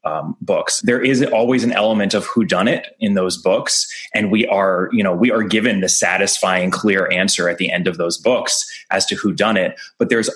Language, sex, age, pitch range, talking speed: English, male, 20-39, 95-130 Hz, 225 wpm